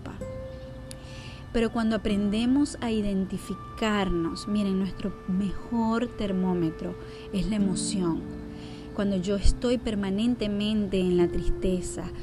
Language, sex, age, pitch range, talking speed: Spanish, female, 20-39, 185-225 Hz, 95 wpm